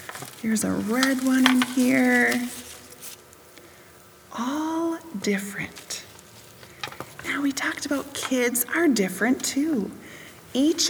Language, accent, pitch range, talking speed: English, American, 205-280 Hz, 95 wpm